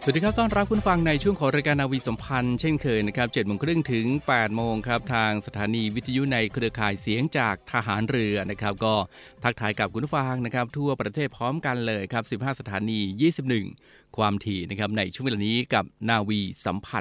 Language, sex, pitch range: Thai, male, 105-130 Hz